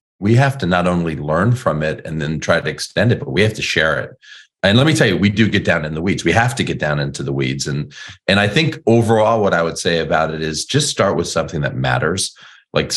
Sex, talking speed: male, 275 wpm